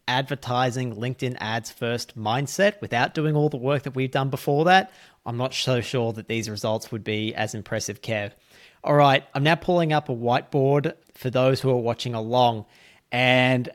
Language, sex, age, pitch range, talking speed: English, male, 30-49, 115-145 Hz, 185 wpm